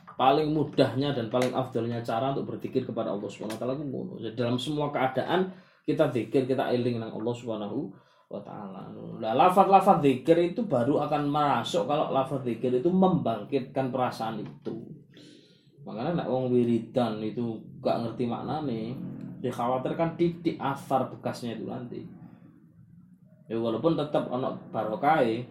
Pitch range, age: 115-170 Hz, 20-39